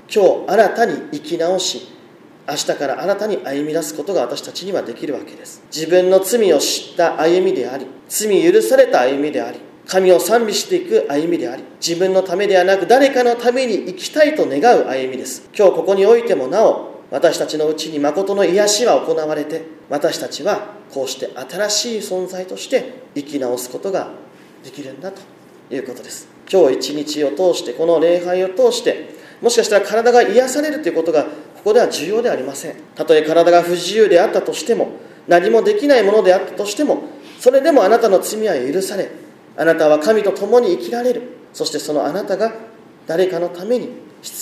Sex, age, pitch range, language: male, 40-59, 160-250 Hz, Japanese